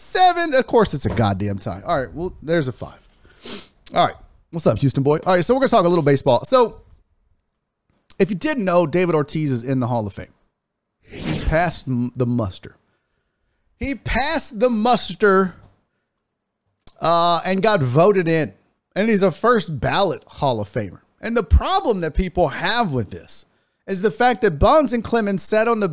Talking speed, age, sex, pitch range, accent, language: 185 wpm, 40-59, male, 135-215 Hz, American, English